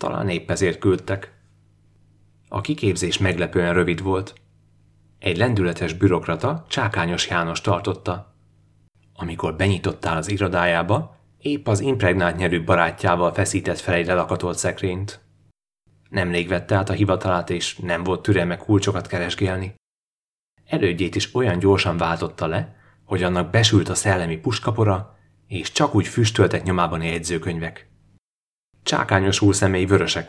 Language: Hungarian